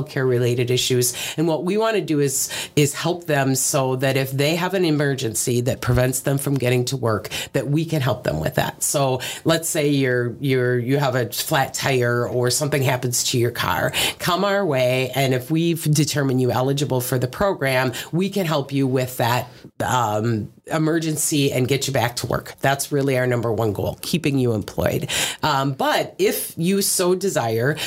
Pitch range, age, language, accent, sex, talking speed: 125-155 Hz, 30-49, English, American, female, 195 wpm